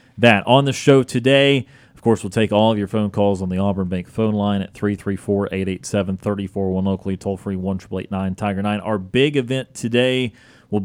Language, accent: English, American